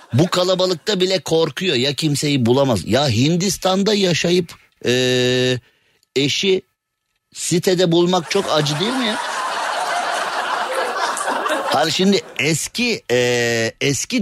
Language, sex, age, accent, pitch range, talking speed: Turkish, male, 50-69, native, 120-200 Hz, 100 wpm